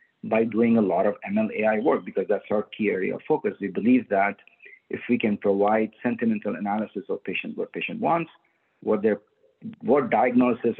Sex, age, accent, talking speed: male, 50-69, Indian, 170 wpm